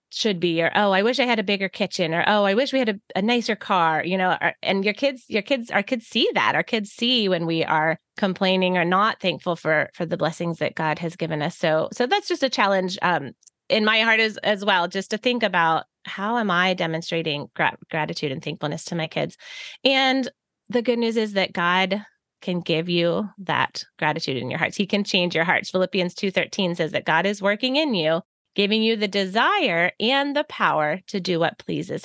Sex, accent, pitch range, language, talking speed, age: female, American, 175-225 Hz, English, 220 wpm, 20-39